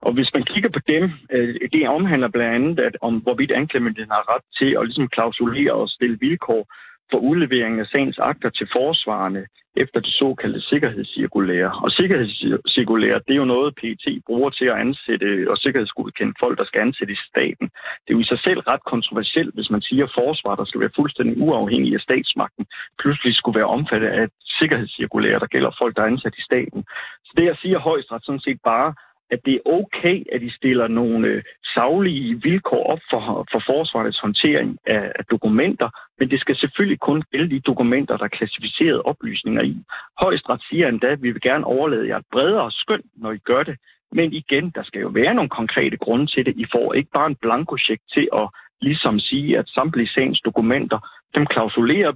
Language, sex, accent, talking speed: Danish, male, native, 200 wpm